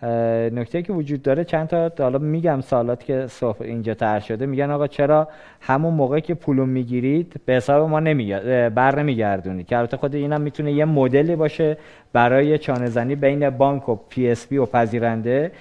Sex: male